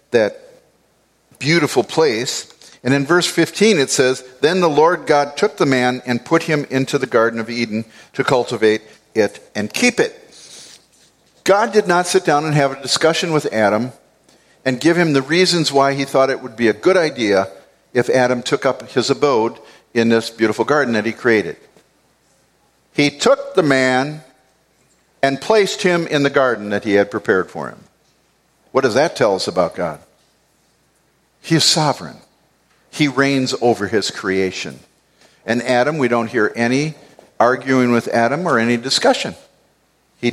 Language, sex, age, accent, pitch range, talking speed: English, male, 50-69, American, 115-150 Hz, 165 wpm